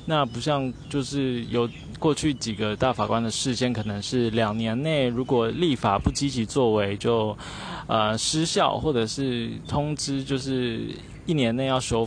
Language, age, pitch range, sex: Chinese, 20-39, 110-145 Hz, male